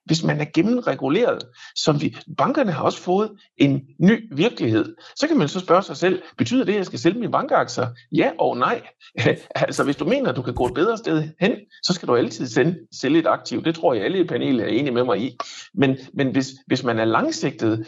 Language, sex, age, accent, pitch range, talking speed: Danish, male, 60-79, native, 120-185 Hz, 230 wpm